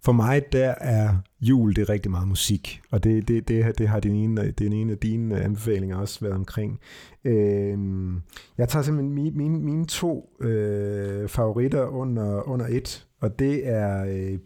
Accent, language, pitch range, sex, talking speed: native, Danish, 100-125 Hz, male, 180 wpm